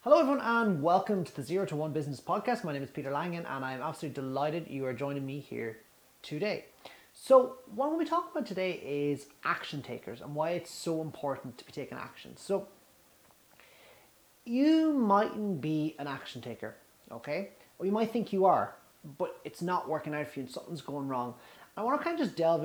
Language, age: English, 30-49